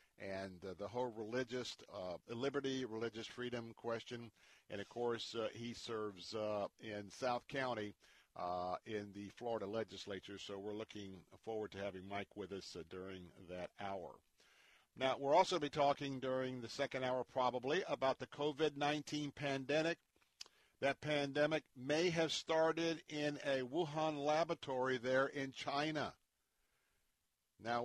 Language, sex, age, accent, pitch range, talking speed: English, male, 50-69, American, 115-140 Hz, 140 wpm